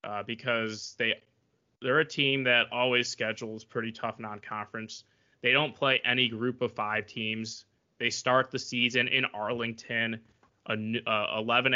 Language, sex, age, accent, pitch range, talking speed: English, male, 20-39, American, 110-125 Hz, 150 wpm